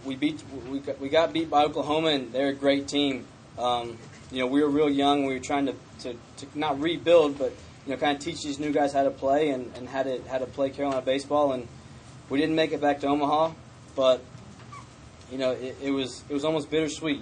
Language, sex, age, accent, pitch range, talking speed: English, male, 20-39, American, 125-145 Hz, 235 wpm